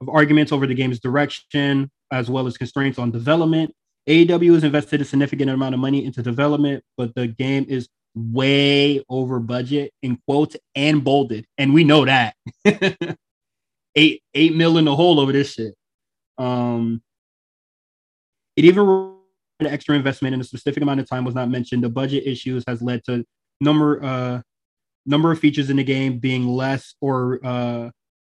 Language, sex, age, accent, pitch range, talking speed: English, male, 20-39, American, 120-145 Hz, 165 wpm